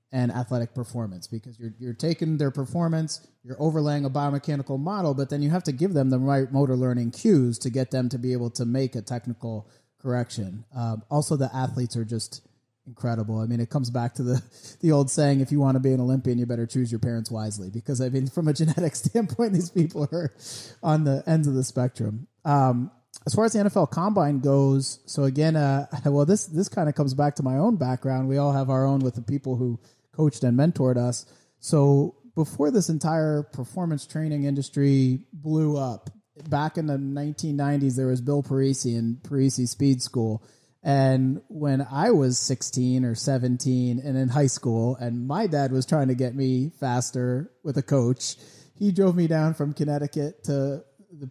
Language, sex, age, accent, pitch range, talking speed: English, male, 30-49, American, 125-150 Hz, 200 wpm